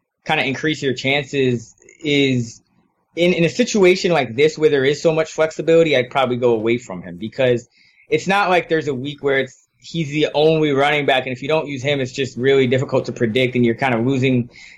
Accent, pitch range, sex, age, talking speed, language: American, 125-160 Hz, male, 20-39, 225 wpm, English